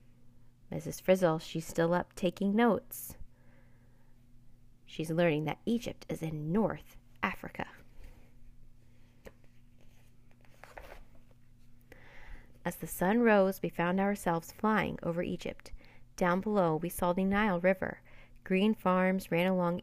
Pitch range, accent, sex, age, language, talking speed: 120-190 Hz, American, female, 30-49, English, 110 wpm